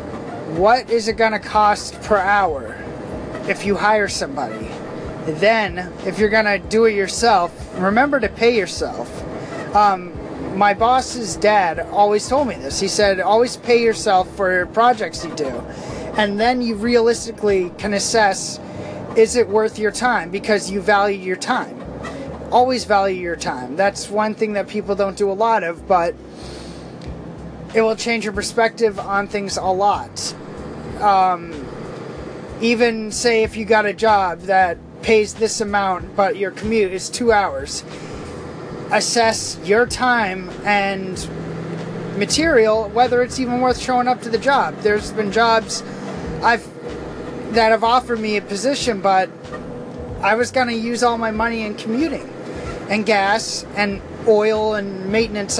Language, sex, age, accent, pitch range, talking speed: English, male, 30-49, American, 195-230 Hz, 150 wpm